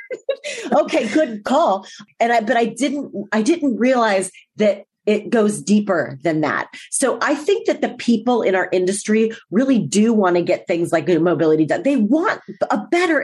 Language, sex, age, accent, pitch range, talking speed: English, female, 40-59, American, 195-285 Hz, 175 wpm